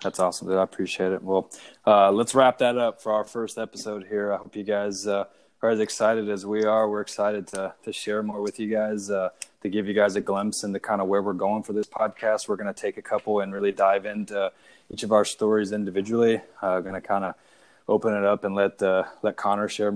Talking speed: 255 wpm